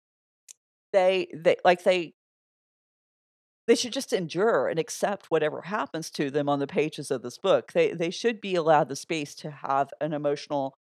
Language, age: English, 40-59